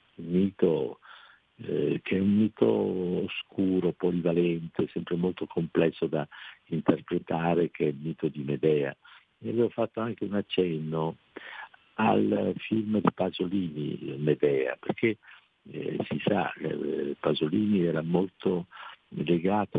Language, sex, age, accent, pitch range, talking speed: Italian, male, 50-69, native, 80-105 Hz, 125 wpm